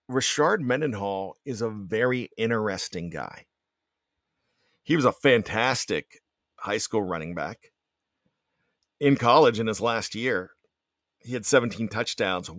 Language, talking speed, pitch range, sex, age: English, 120 wpm, 110-130 Hz, male, 50-69